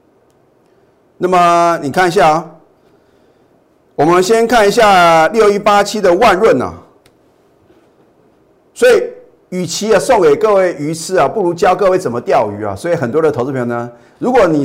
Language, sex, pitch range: Chinese, male, 125-195 Hz